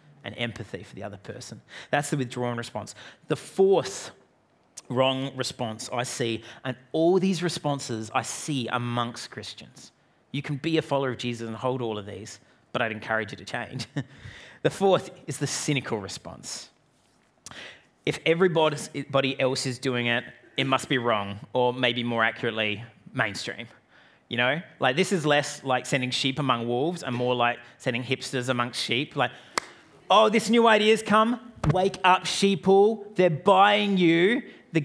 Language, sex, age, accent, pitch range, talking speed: English, male, 30-49, Australian, 125-175 Hz, 165 wpm